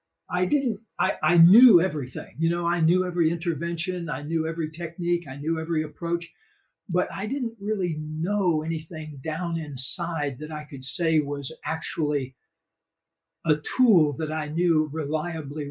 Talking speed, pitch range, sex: 155 wpm, 150-180 Hz, male